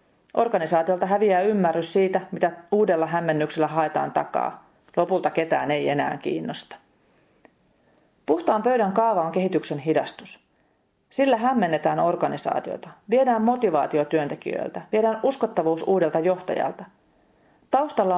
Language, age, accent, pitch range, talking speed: Finnish, 40-59, native, 155-195 Hz, 100 wpm